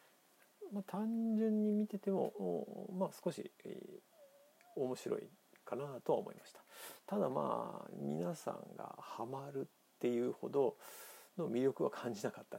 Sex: male